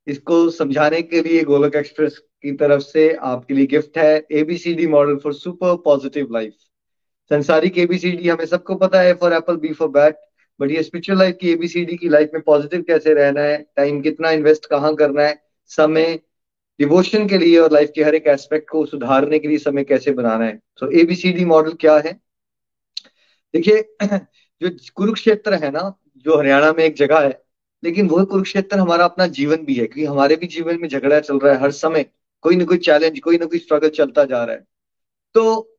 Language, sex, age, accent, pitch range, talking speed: Hindi, male, 20-39, native, 150-175 Hz, 195 wpm